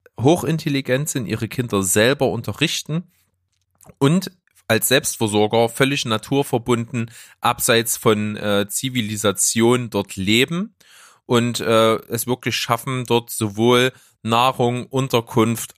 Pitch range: 105-130 Hz